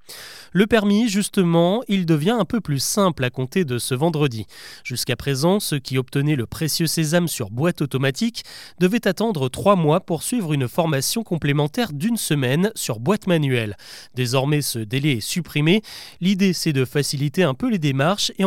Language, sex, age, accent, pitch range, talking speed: French, male, 30-49, French, 140-195 Hz, 170 wpm